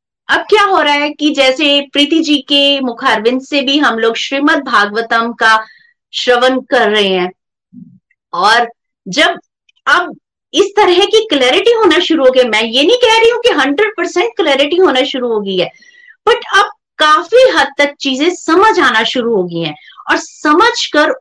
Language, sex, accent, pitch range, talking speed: Hindi, female, native, 235-380 Hz, 175 wpm